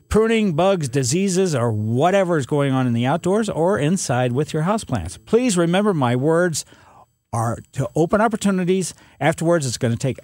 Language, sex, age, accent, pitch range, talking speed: English, male, 50-69, American, 130-170 Hz, 170 wpm